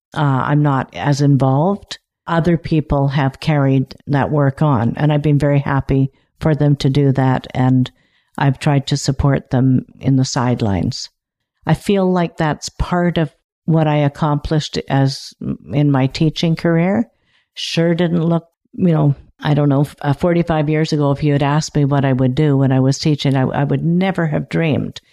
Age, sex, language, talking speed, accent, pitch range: 50-69, female, English, 180 wpm, American, 140-165 Hz